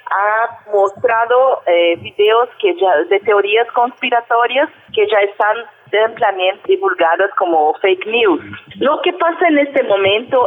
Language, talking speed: Spanish, 130 wpm